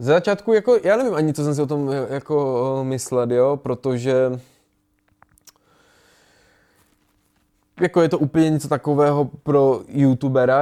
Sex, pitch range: male, 120-135 Hz